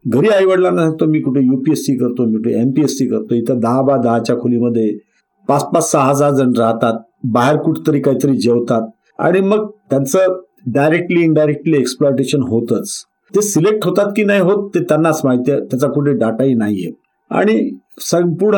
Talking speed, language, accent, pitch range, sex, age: 165 wpm, Marathi, native, 120-170 Hz, male, 50-69